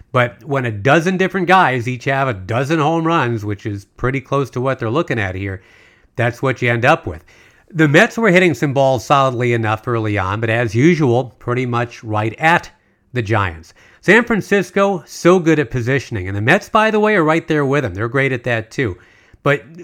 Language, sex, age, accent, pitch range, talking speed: English, male, 40-59, American, 110-155 Hz, 210 wpm